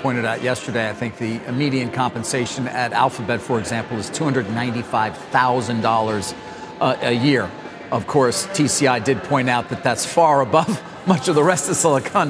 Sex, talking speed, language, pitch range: male, 155 wpm, English, 125-150 Hz